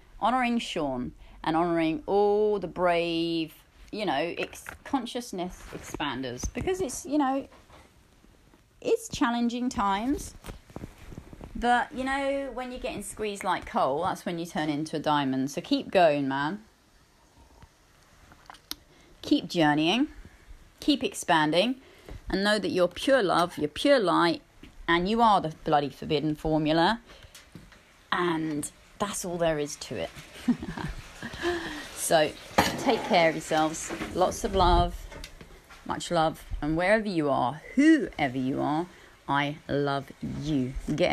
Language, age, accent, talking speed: English, 30-49, British, 125 wpm